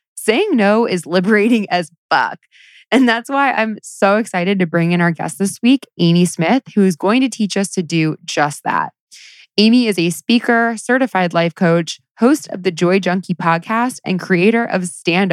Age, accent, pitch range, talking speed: 20-39, American, 170-220 Hz, 190 wpm